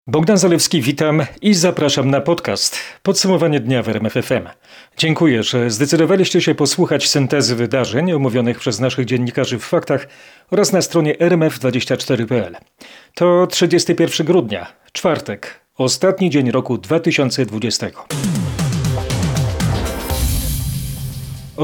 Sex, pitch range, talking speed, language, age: male, 130-165 Hz, 105 wpm, Polish, 40-59